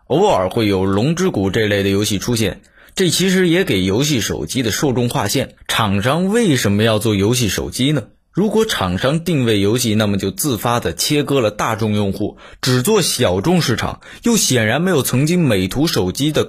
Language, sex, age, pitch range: Chinese, male, 20-39, 100-150 Hz